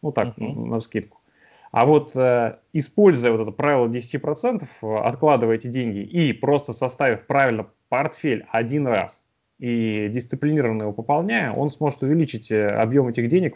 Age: 20-39